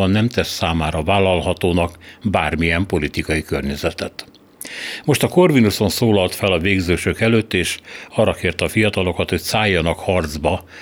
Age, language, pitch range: 60-79, Hungarian, 85-105 Hz